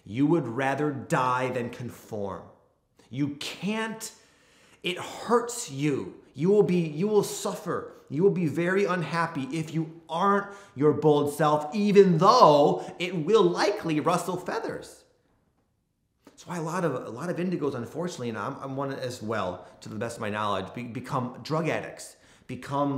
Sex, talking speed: male, 160 wpm